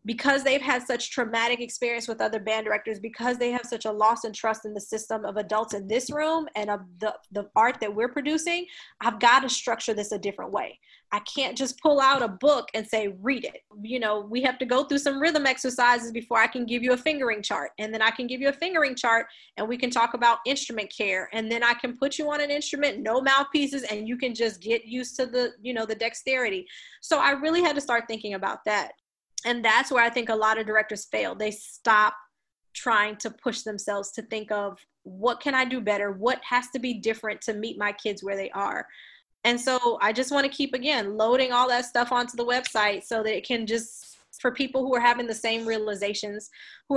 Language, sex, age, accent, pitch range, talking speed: English, female, 20-39, American, 215-260 Hz, 235 wpm